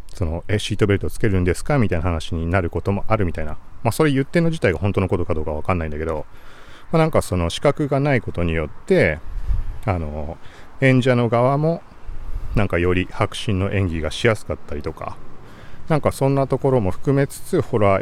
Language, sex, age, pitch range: Japanese, male, 40-59, 80-110 Hz